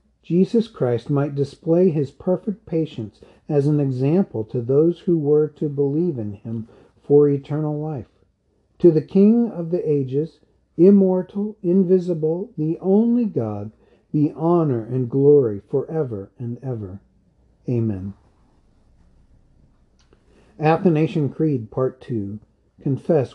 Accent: American